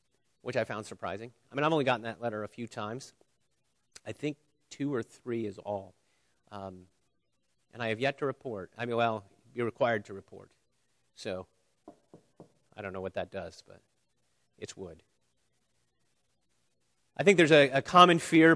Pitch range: 110-150 Hz